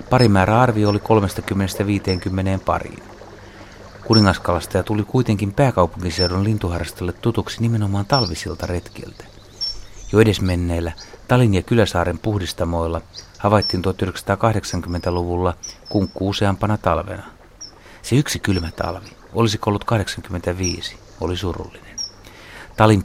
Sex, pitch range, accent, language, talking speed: male, 90-110 Hz, native, Finnish, 95 wpm